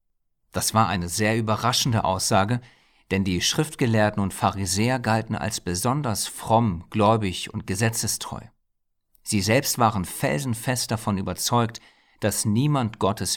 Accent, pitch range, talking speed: German, 95-115 Hz, 120 wpm